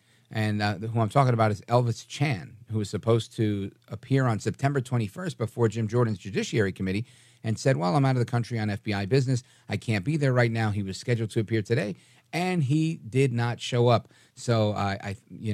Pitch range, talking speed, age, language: 105-125 Hz, 210 wpm, 40-59, English